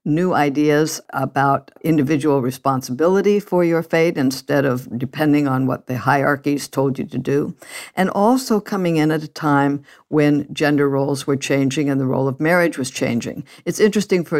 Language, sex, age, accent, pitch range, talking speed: English, female, 60-79, American, 135-175 Hz, 170 wpm